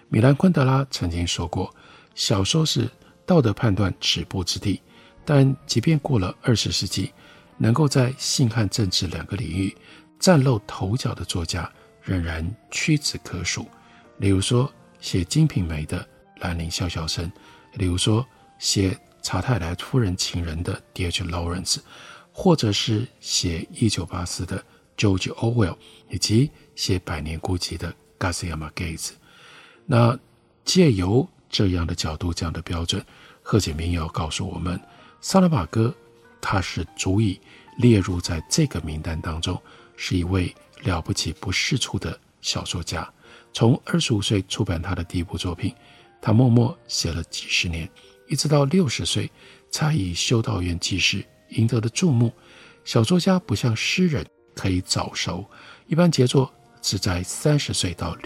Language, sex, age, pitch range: Chinese, male, 50-69, 90-130 Hz